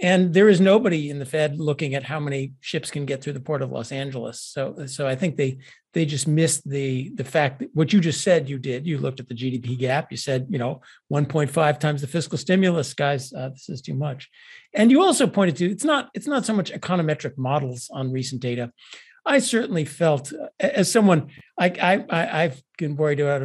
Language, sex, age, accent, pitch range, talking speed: English, male, 50-69, American, 135-180 Hz, 220 wpm